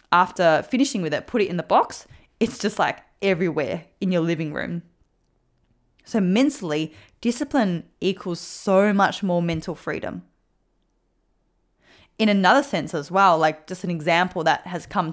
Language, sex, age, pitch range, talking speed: English, female, 20-39, 170-210 Hz, 150 wpm